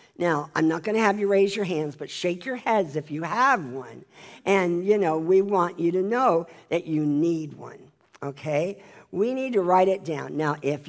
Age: 50-69